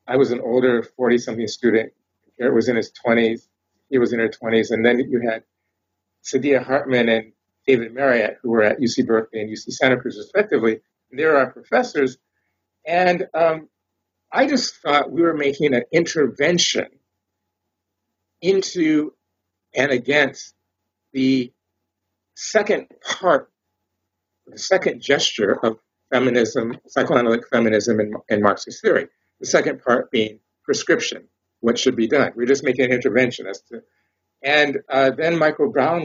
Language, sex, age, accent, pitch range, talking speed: English, male, 50-69, American, 105-135 Hz, 140 wpm